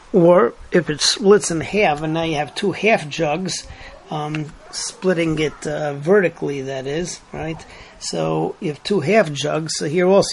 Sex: male